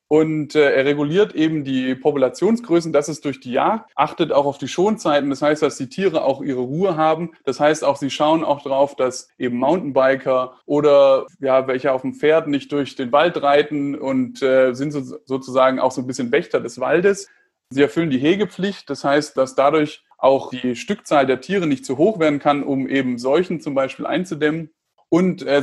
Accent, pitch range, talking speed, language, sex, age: German, 130-150 Hz, 200 wpm, German, male, 30-49